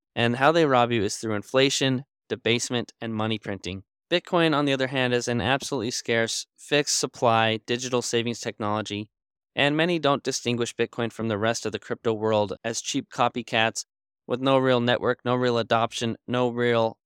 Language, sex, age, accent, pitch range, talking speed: English, male, 10-29, American, 110-125 Hz, 175 wpm